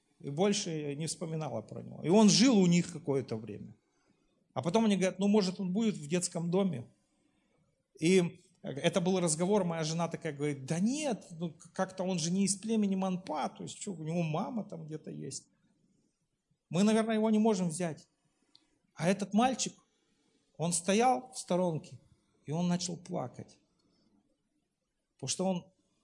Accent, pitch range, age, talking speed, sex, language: native, 170-220 Hz, 40-59, 165 wpm, male, Russian